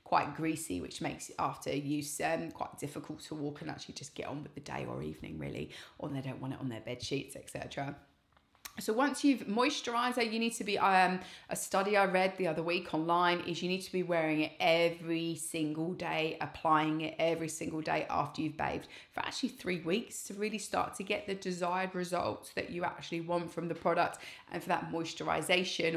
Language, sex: English, female